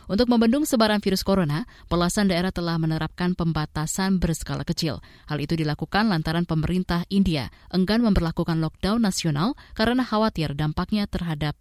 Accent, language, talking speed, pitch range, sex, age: native, Indonesian, 135 wpm, 160-210 Hz, female, 20-39